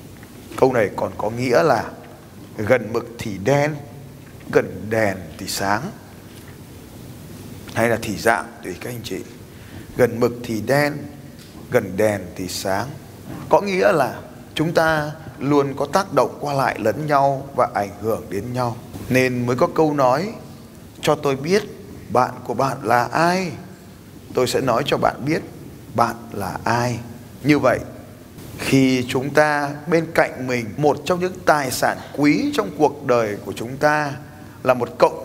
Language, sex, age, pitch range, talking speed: Vietnamese, male, 20-39, 115-145 Hz, 160 wpm